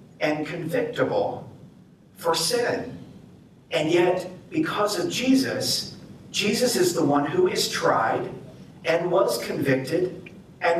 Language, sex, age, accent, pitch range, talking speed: English, male, 50-69, American, 150-195 Hz, 110 wpm